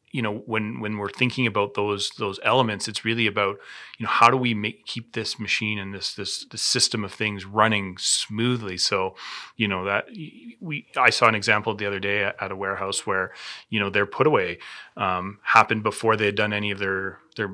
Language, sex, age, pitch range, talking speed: English, male, 30-49, 100-115 Hz, 215 wpm